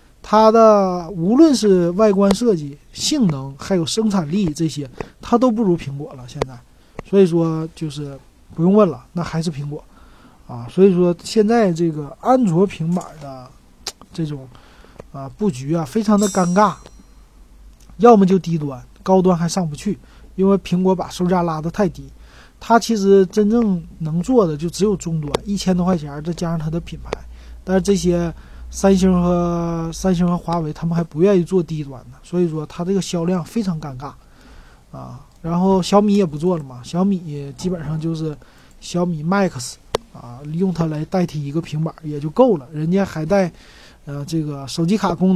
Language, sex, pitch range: Chinese, male, 150-195 Hz